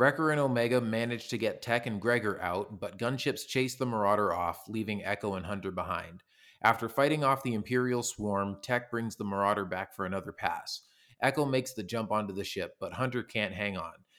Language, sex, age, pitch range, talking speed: English, male, 30-49, 95-120 Hz, 200 wpm